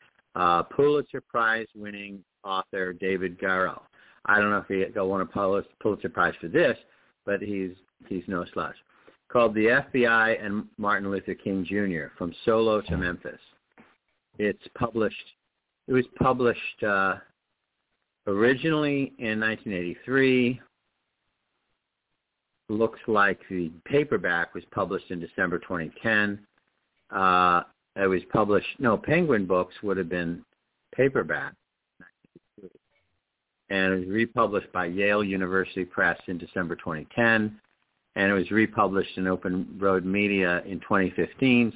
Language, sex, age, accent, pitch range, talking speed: English, male, 50-69, American, 90-115 Hz, 125 wpm